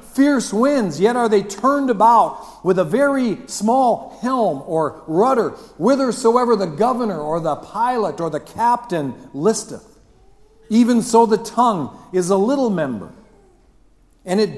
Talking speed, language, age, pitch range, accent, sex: 140 wpm, English, 50-69, 200-265 Hz, American, male